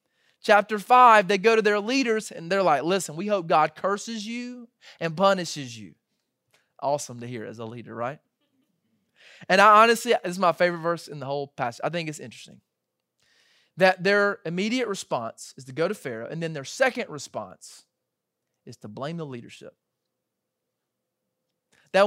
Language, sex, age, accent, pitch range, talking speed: English, male, 30-49, American, 145-195 Hz, 170 wpm